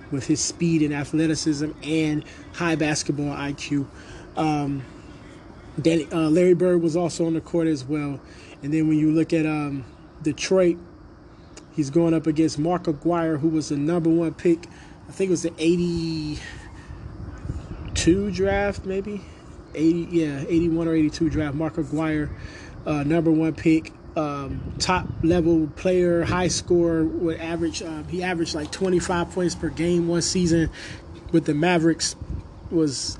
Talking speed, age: 145 wpm, 20-39